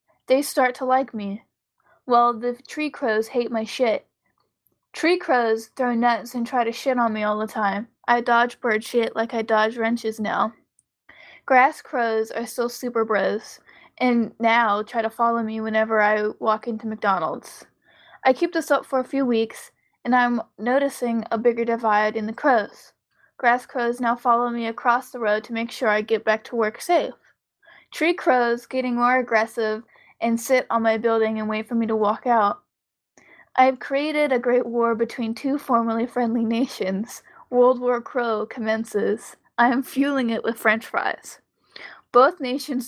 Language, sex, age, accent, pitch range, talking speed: English, female, 20-39, American, 220-250 Hz, 175 wpm